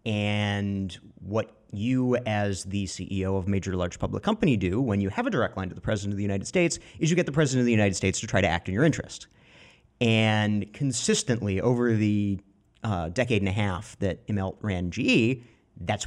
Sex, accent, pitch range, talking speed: male, American, 95-115 Hz, 210 wpm